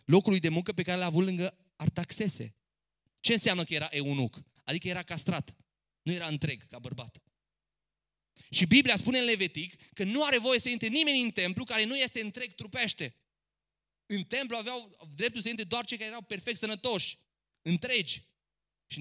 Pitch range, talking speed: 150-220 Hz, 175 wpm